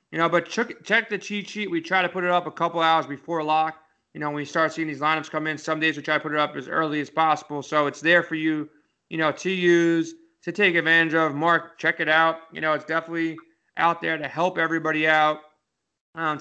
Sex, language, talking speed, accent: male, English, 250 wpm, American